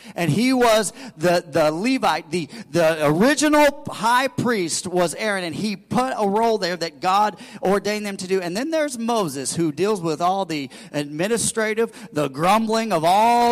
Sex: male